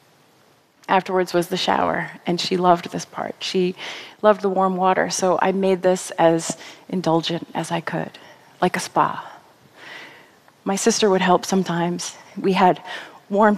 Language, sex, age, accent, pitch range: Korean, female, 30-49, American, 175-205 Hz